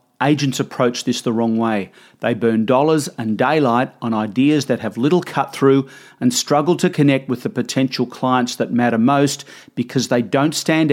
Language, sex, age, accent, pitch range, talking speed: English, male, 40-59, Australian, 125-150 Hz, 180 wpm